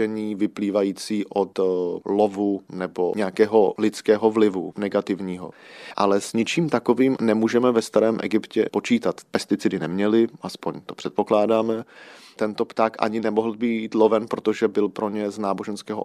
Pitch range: 100-115 Hz